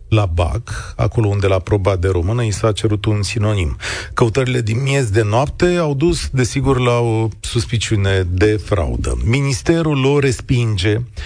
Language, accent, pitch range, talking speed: Romanian, native, 100-135 Hz, 155 wpm